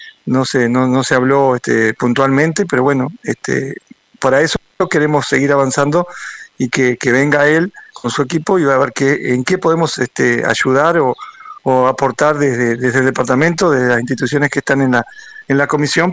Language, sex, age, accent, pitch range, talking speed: Spanish, male, 50-69, Argentinian, 130-165 Hz, 190 wpm